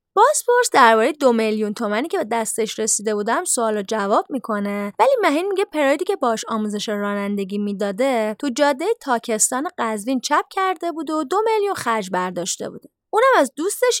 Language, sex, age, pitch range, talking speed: Persian, female, 20-39, 215-325 Hz, 170 wpm